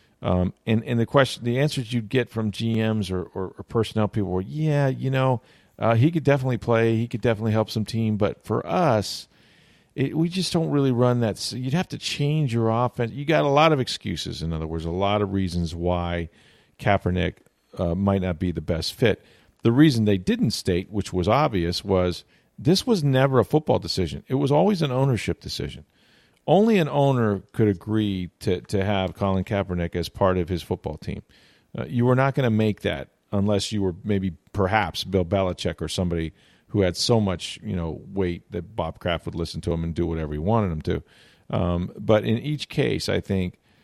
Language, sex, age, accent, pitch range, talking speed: English, male, 40-59, American, 90-120 Hz, 210 wpm